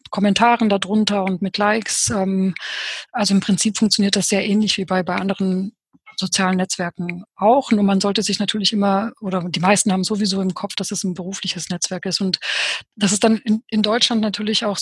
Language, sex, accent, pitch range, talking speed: German, female, German, 195-220 Hz, 190 wpm